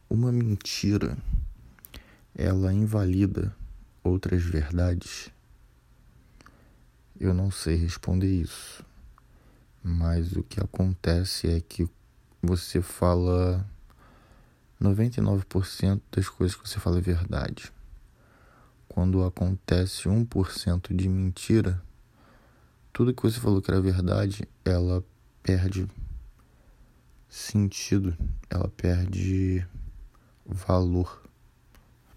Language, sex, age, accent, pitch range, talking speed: Portuguese, male, 20-39, Brazilian, 90-105 Hz, 85 wpm